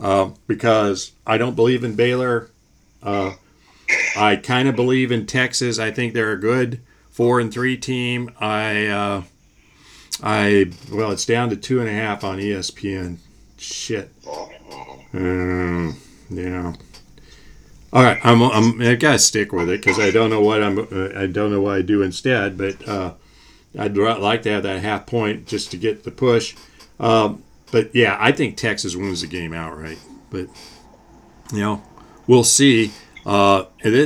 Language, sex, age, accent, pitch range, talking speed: English, male, 50-69, American, 100-120 Hz, 160 wpm